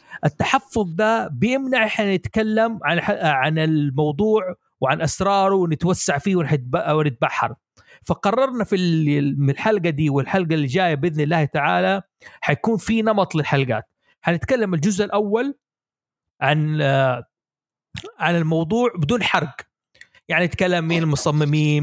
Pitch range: 155-210 Hz